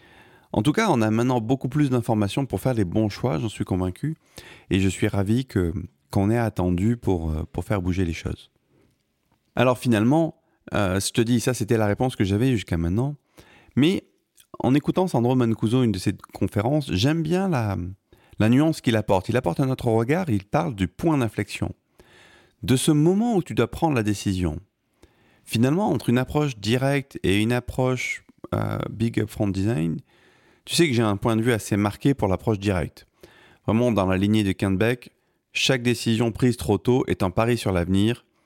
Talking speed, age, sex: 190 wpm, 40-59, male